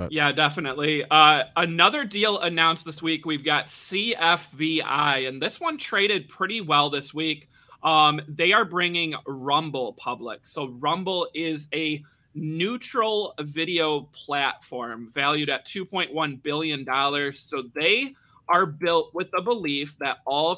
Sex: male